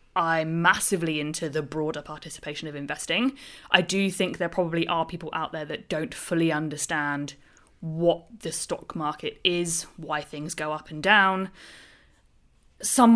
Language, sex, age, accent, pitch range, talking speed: English, female, 20-39, British, 155-195 Hz, 150 wpm